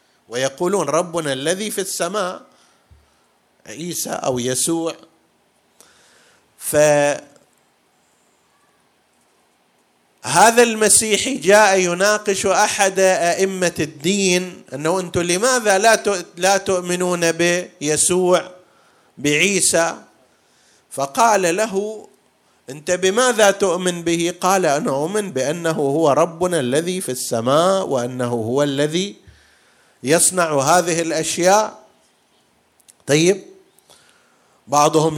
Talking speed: 80 wpm